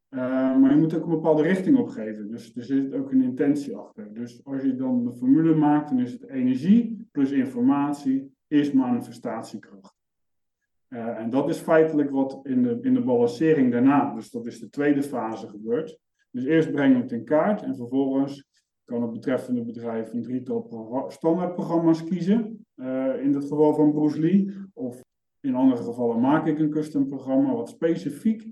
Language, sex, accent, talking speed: Dutch, male, Dutch, 175 wpm